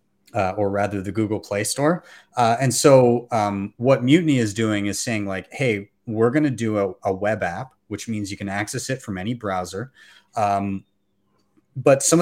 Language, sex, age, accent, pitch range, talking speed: English, male, 30-49, American, 100-120 Hz, 190 wpm